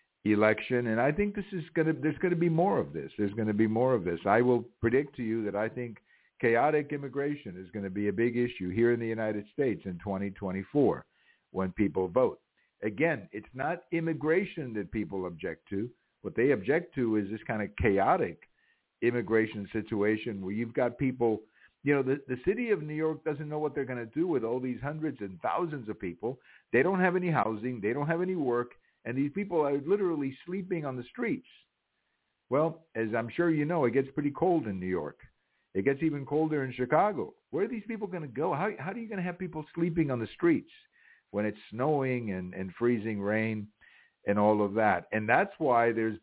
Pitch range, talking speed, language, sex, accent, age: 105-160 Hz, 215 wpm, English, male, American, 60-79